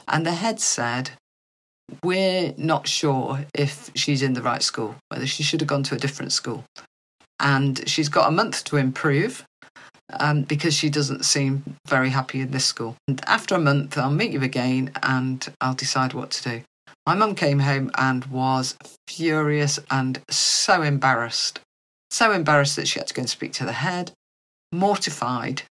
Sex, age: female, 40-59